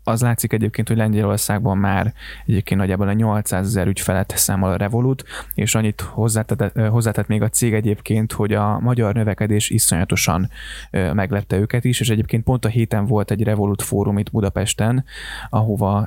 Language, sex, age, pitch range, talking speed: Hungarian, male, 20-39, 105-115 Hz, 160 wpm